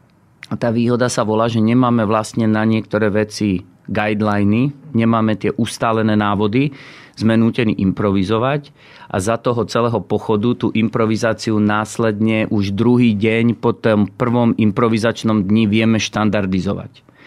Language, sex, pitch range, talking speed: Slovak, male, 105-115 Hz, 130 wpm